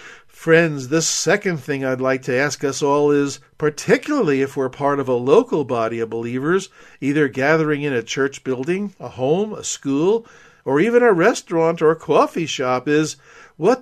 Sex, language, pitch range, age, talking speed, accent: male, English, 135-200 Hz, 50-69, 175 wpm, American